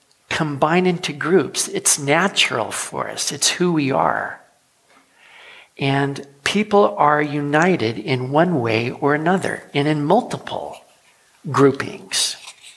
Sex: male